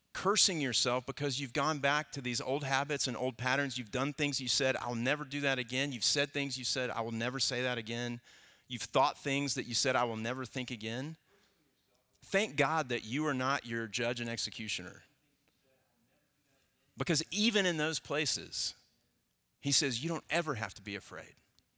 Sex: male